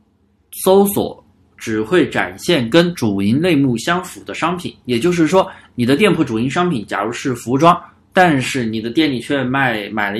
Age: 20-39